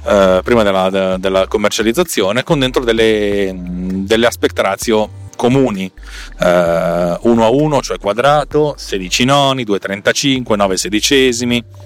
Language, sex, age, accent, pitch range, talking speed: Italian, male, 40-59, native, 95-135 Hz, 105 wpm